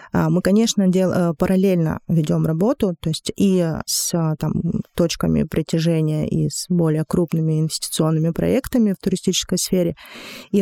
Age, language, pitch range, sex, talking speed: 20-39, Russian, 165-185 Hz, female, 130 wpm